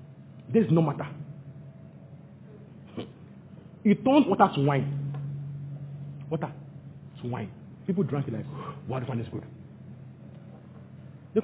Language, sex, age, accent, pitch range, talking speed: English, male, 40-59, Nigerian, 145-190 Hz, 105 wpm